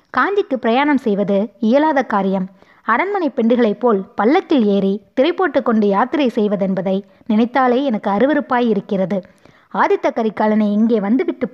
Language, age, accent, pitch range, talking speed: Tamil, 20-39, native, 205-280 Hz, 115 wpm